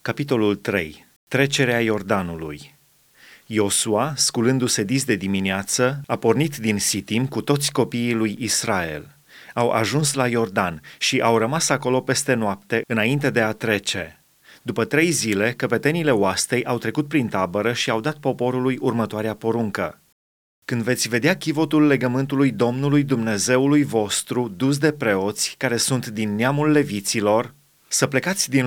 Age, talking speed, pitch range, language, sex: 30-49, 140 wpm, 110-140 Hz, Romanian, male